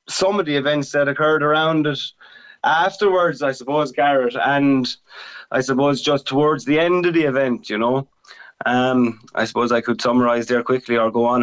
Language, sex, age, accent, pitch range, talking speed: English, male, 20-39, Irish, 120-145 Hz, 185 wpm